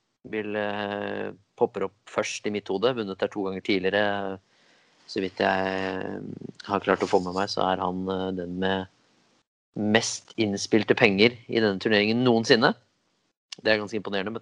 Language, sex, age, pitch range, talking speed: English, male, 30-49, 95-110 Hz, 160 wpm